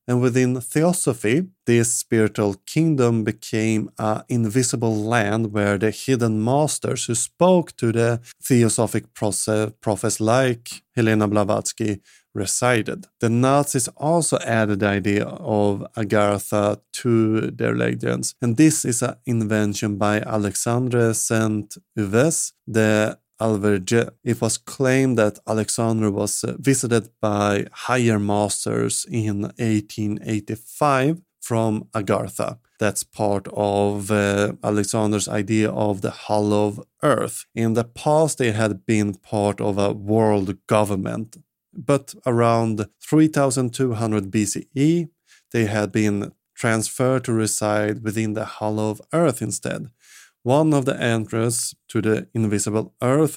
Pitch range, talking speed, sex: 105-125 Hz, 120 wpm, male